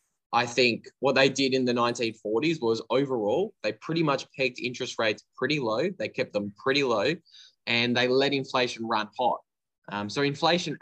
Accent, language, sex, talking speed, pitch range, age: Australian, English, male, 175 wpm, 115-135 Hz, 10-29